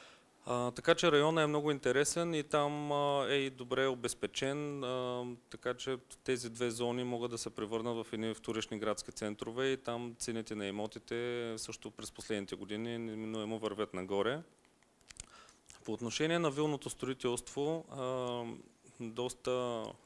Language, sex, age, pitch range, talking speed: Bulgarian, male, 30-49, 110-125 Hz, 140 wpm